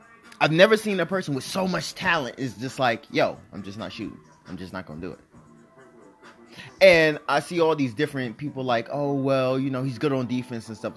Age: 20-39